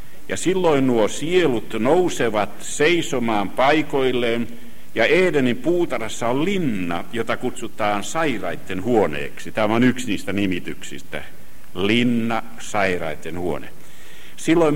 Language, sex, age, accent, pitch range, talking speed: Finnish, male, 60-79, native, 105-145 Hz, 100 wpm